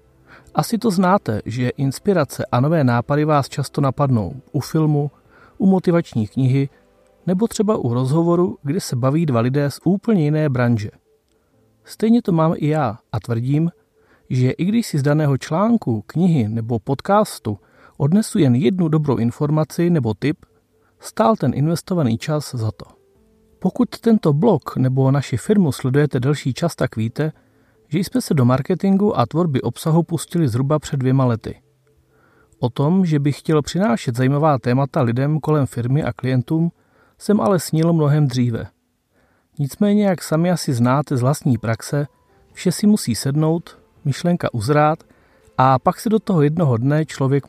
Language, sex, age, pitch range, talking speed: Czech, male, 40-59, 125-170 Hz, 155 wpm